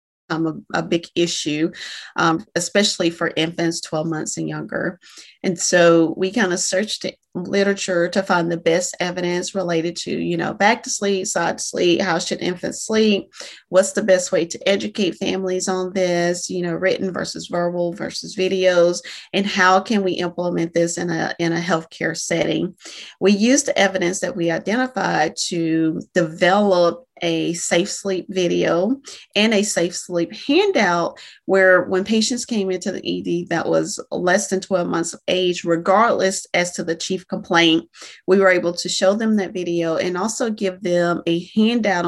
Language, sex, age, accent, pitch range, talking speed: English, female, 40-59, American, 170-195 Hz, 170 wpm